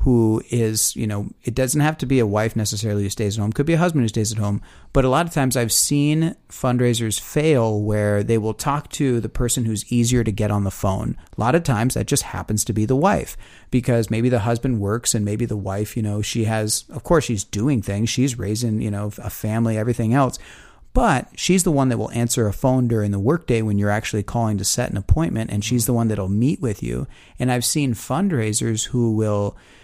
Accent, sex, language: American, male, English